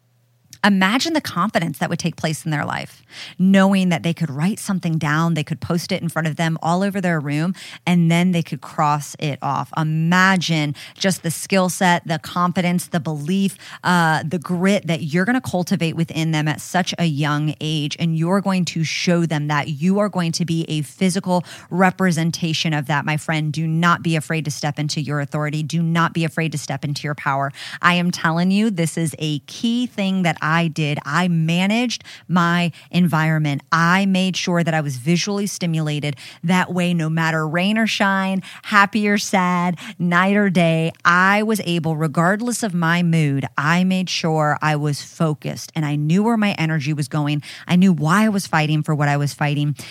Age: 30-49